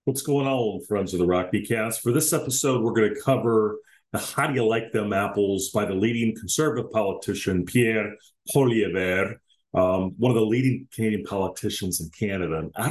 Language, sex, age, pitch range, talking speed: English, male, 40-59, 95-135 Hz, 175 wpm